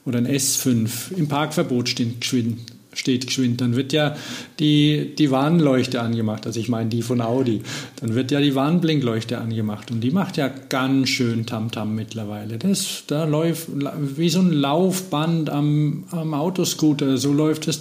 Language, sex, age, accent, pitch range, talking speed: German, male, 50-69, German, 125-155 Hz, 160 wpm